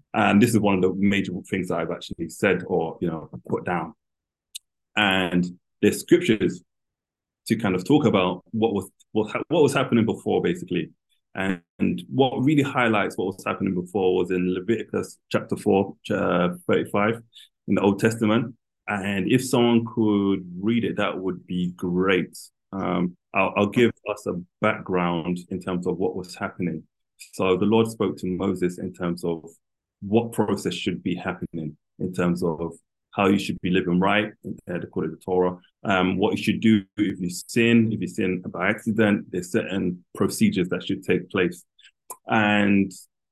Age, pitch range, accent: 20-39, 90-110 Hz, British